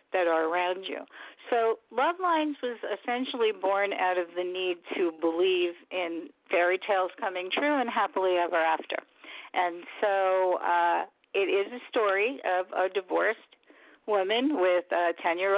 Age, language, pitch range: 50-69, English, 175-215 Hz